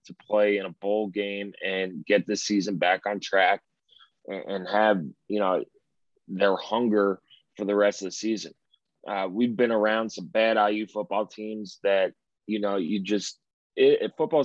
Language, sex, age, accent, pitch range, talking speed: English, male, 30-49, American, 100-120 Hz, 165 wpm